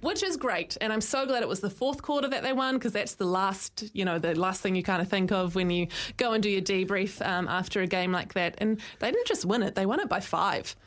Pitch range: 175-215 Hz